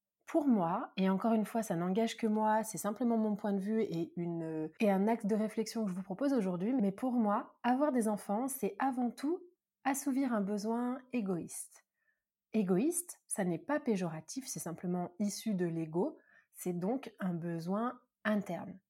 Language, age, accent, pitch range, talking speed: French, 30-49, French, 185-245 Hz, 180 wpm